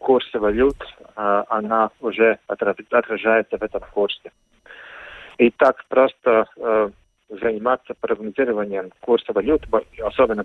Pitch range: 110-155 Hz